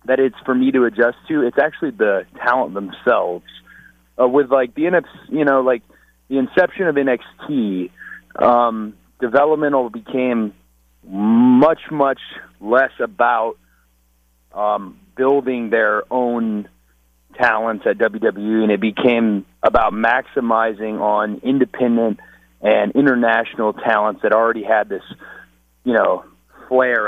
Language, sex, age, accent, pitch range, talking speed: English, male, 30-49, American, 95-130 Hz, 120 wpm